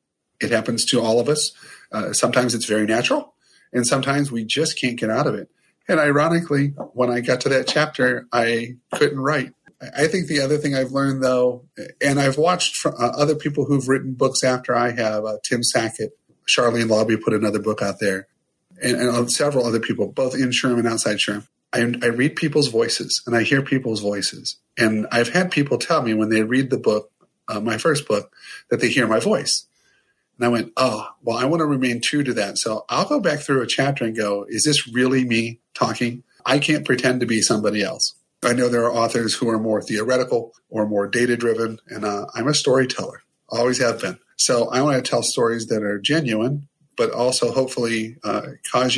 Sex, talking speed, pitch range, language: male, 205 wpm, 115-140 Hz, English